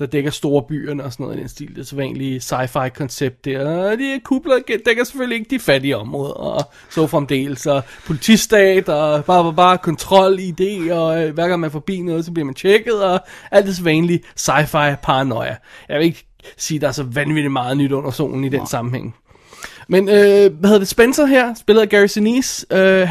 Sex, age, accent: male, 20-39, native